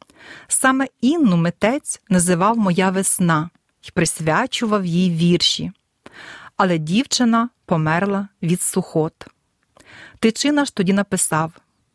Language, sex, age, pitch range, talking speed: Ukrainian, female, 40-59, 175-235 Hz, 95 wpm